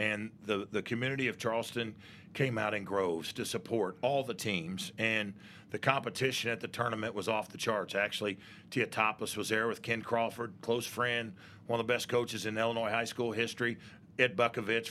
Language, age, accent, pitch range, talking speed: English, 40-59, American, 105-125 Hz, 185 wpm